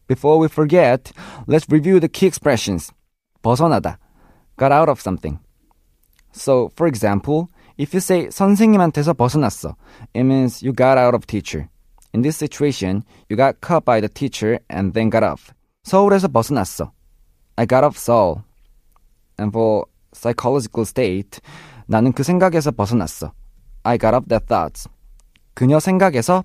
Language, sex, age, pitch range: Korean, male, 20-39, 105-155 Hz